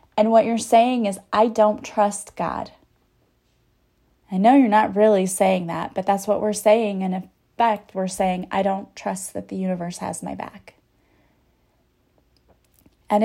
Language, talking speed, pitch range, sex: English, 160 wpm, 195-245 Hz, female